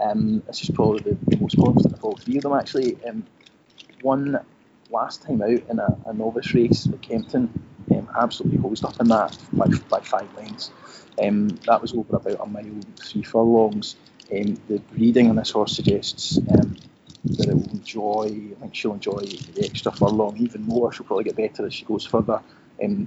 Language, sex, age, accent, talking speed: English, male, 30-49, British, 190 wpm